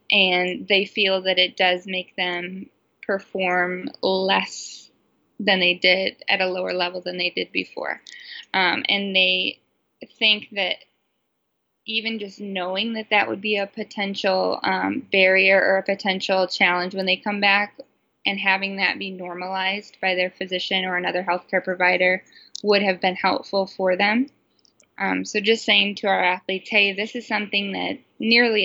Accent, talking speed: American, 160 wpm